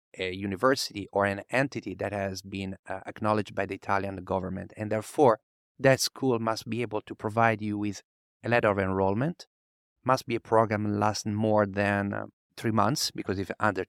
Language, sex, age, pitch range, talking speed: English, male, 30-49, 95-115 Hz, 180 wpm